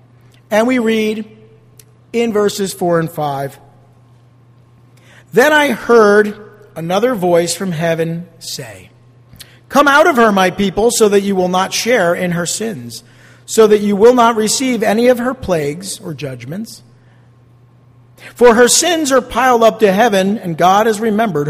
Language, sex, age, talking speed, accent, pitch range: English, male, 50-69, 155 wpm, American, 130-220 Hz